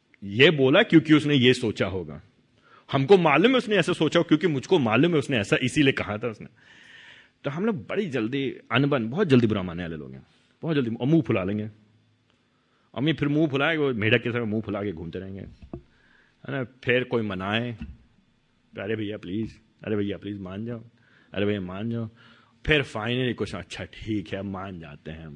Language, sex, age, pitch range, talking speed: Hindi, male, 30-49, 110-160 Hz, 185 wpm